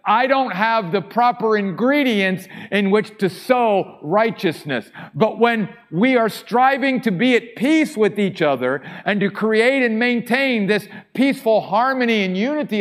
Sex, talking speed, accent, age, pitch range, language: male, 155 wpm, American, 50-69, 165-225 Hz, English